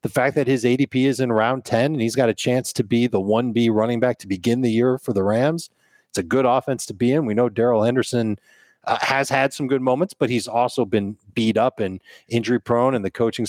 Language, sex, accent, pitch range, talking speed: English, male, American, 110-135 Hz, 250 wpm